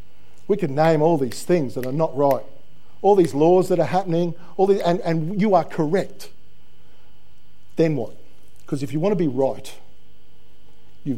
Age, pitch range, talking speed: 50-69, 135-175 Hz, 175 wpm